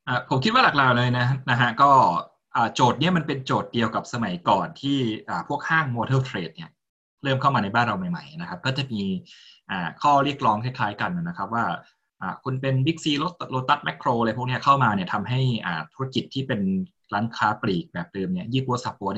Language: Thai